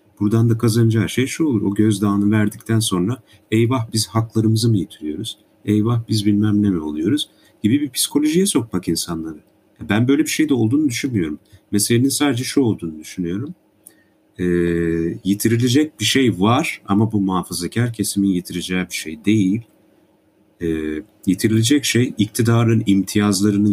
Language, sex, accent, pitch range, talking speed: Turkish, male, native, 100-120 Hz, 140 wpm